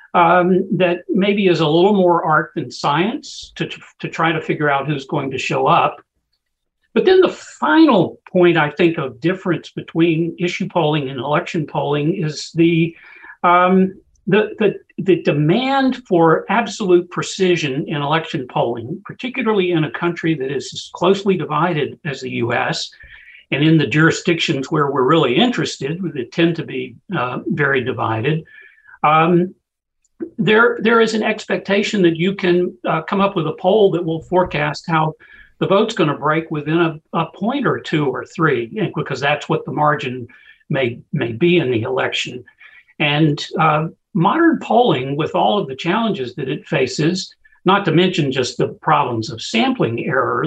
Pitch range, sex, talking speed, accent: 155-195 Hz, male, 170 wpm, American